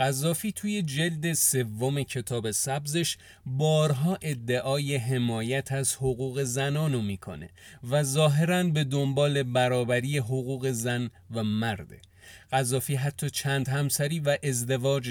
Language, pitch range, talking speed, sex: Persian, 115-140 Hz, 110 wpm, male